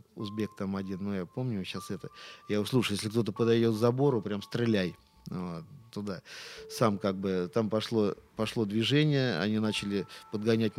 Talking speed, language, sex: 160 wpm, Russian, male